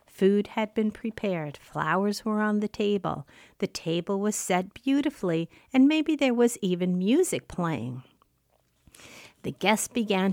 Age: 50-69